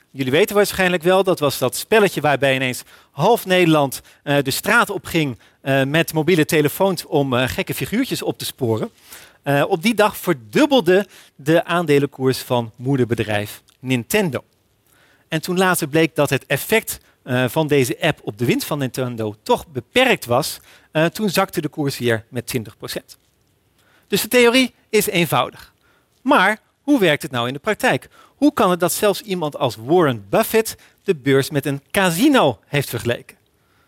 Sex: male